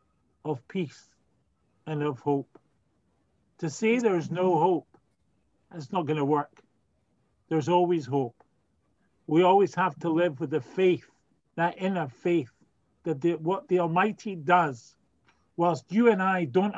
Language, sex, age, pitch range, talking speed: English, male, 40-59, 155-205 Hz, 145 wpm